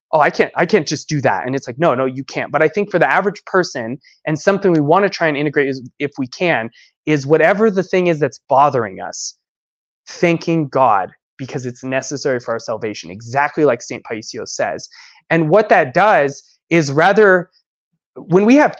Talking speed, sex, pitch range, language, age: 205 wpm, male, 145-185 Hz, English, 20-39